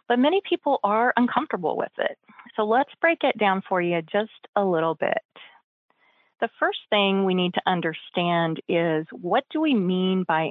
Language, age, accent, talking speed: English, 30-49, American, 175 wpm